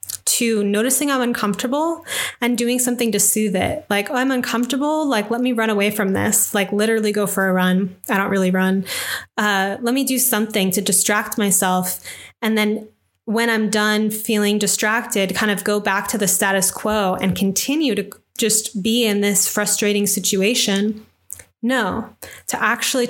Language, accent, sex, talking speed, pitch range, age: English, American, female, 170 wpm, 195-235 Hz, 20-39